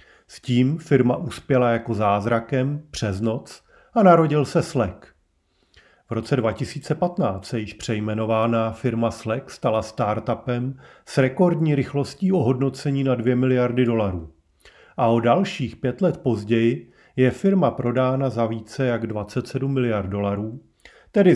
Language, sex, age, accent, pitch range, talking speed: Czech, male, 40-59, native, 110-140 Hz, 130 wpm